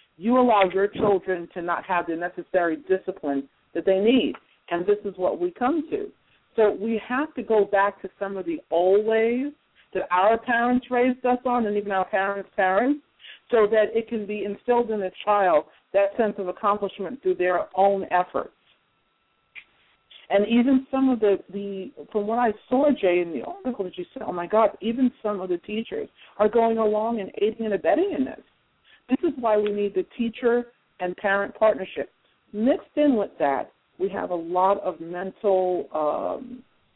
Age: 50-69